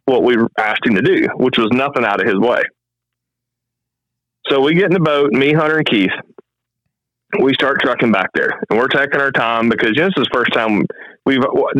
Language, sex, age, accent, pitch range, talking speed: English, male, 30-49, American, 110-135 Hz, 225 wpm